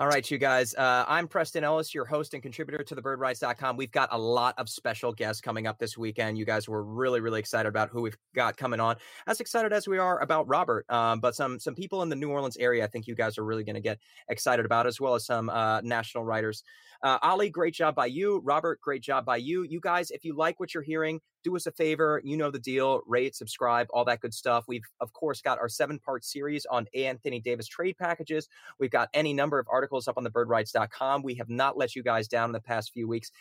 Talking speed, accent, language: 250 wpm, American, English